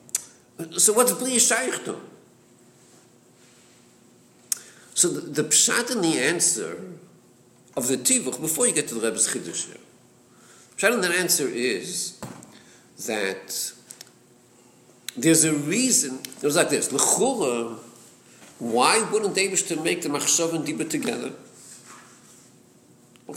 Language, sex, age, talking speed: English, male, 50-69, 110 wpm